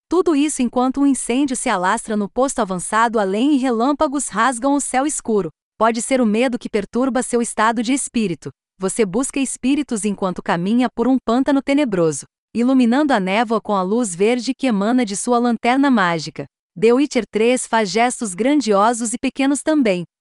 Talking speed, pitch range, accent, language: 170 wpm, 200-255 Hz, Brazilian, Portuguese